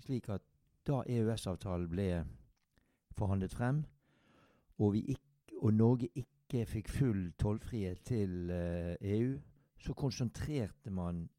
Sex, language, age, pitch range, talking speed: male, English, 60-79, 95-125 Hz, 100 wpm